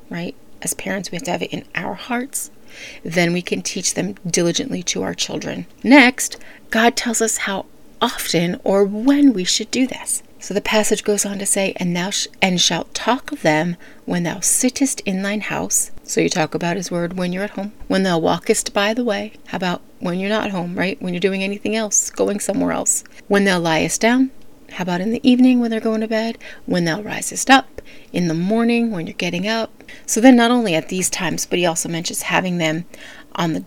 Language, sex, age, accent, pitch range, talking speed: English, female, 30-49, American, 180-235 Hz, 215 wpm